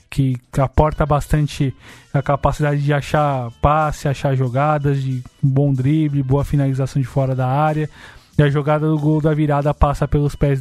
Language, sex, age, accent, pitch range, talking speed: Portuguese, male, 20-39, Brazilian, 130-150 Hz, 165 wpm